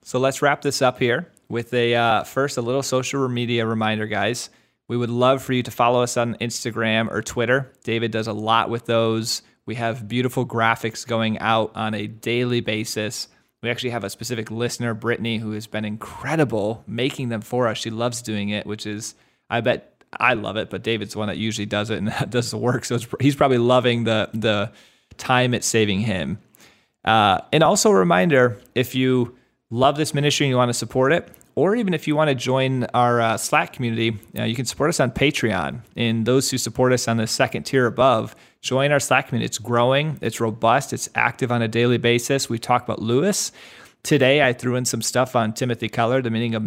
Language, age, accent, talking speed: English, 30-49, American, 215 wpm